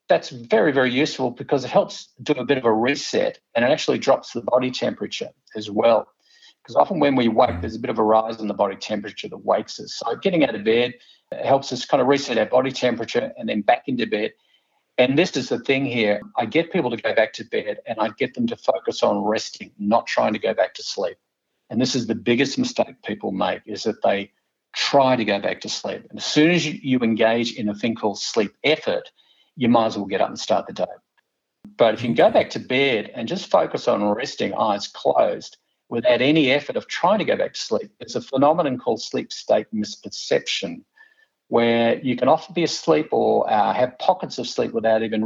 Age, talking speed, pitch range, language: 50-69, 230 wpm, 115-150 Hz, English